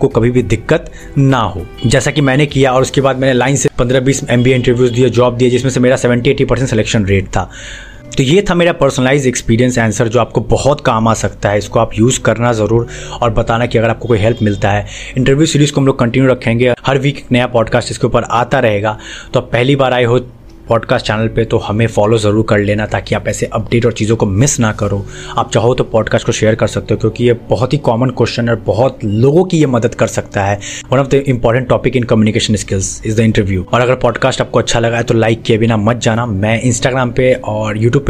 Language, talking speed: Hindi, 240 wpm